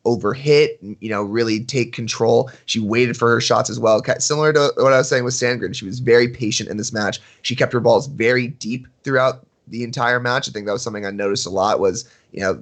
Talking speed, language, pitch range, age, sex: 240 wpm, English, 110-135 Hz, 20-39, male